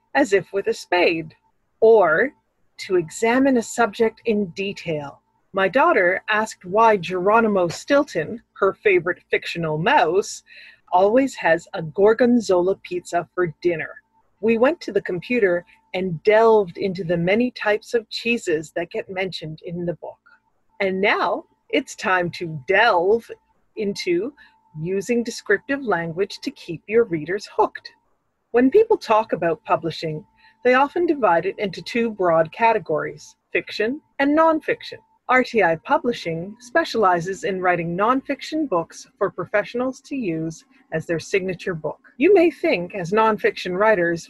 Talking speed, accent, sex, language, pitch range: 135 wpm, American, female, English, 180-255 Hz